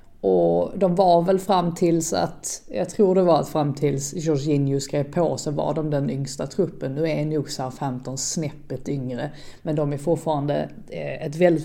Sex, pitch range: female, 155-190 Hz